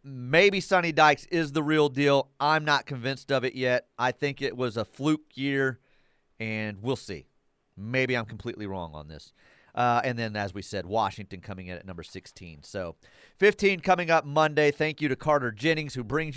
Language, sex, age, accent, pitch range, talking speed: English, male, 30-49, American, 100-145 Hz, 195 wpm